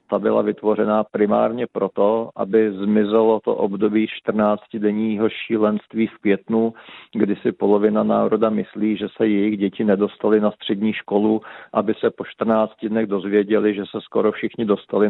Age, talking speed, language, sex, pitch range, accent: 40-59, 145 wpm, Czech, male, 105-115 Hz, native